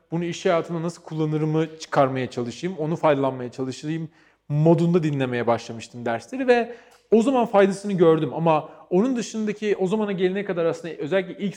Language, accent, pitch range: Turkish, native, 140-200 Hz